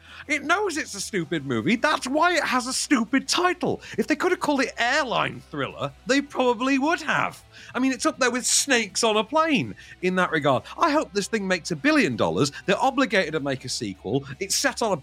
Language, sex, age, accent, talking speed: English, male, 40-59, British, 225 wpm